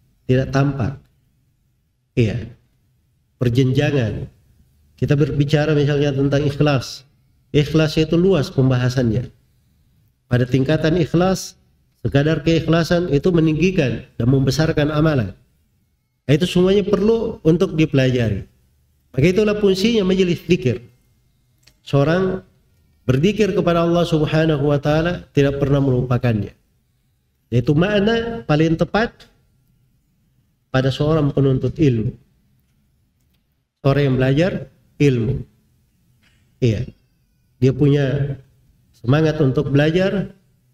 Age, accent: 50-69, native